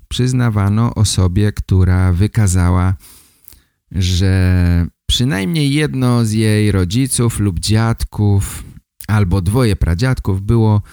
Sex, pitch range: male, 95-115 Hz